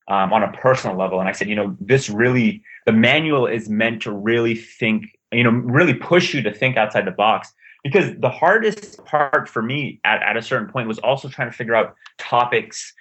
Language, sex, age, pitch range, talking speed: English, male, 30-49, 105-125 Hz, 215 wpm